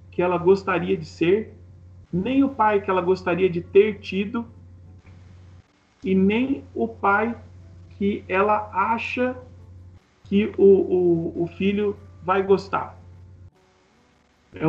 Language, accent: Portuguese, Brazilian